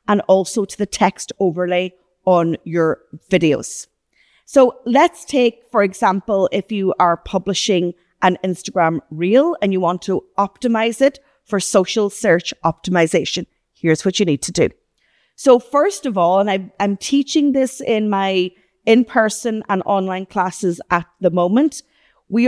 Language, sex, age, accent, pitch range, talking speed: English, female, 40-59, Irish, 175-225 Hz, 145 wpm